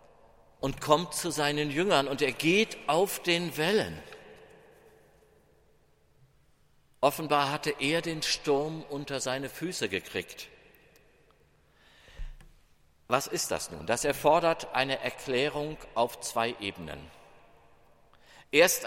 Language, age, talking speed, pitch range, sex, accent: German, 50-69, 100 wpm, 140-180 Hz, male, German